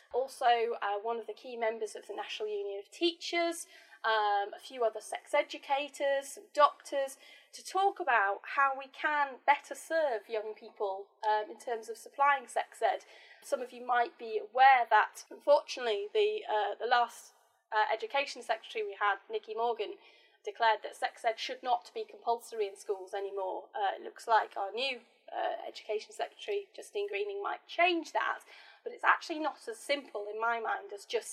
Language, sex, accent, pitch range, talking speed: English, female, British, 235-375 Hz, 175 wpm